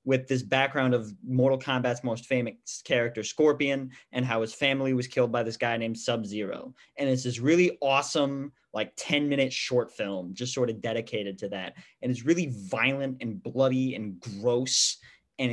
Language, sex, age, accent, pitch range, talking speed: English, male, 20-39, American, 120-150 Hz, 180 wpm